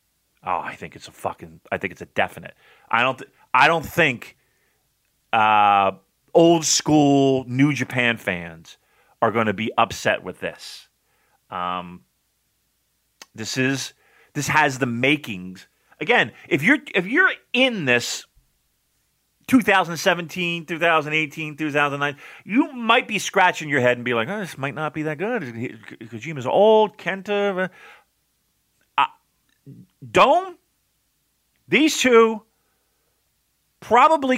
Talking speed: 120 wpm